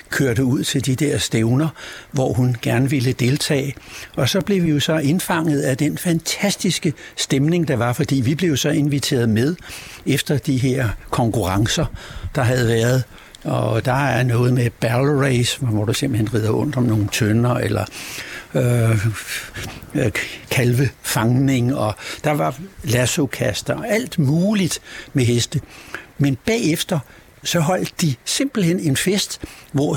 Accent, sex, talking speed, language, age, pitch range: native, male, 145 wpm, Danish, 60-79, 125-155 Hz